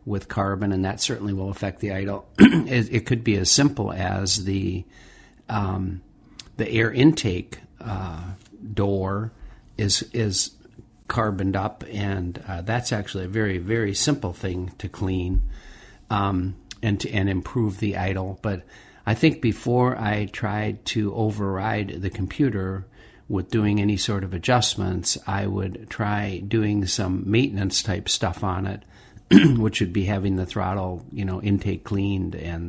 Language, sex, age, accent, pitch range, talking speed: English, male, 50-69, American, 95-105 Hz, 150 wpm